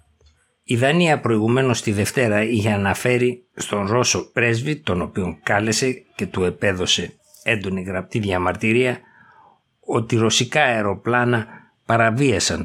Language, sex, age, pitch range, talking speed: Greek, male, 60-79, 95-120 Hz, 110 wpm